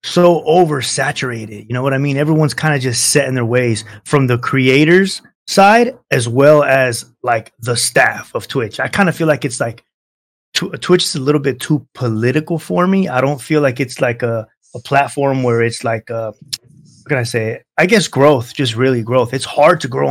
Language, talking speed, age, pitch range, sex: English, 210 wpm, 20-39, 120-150 Hz, male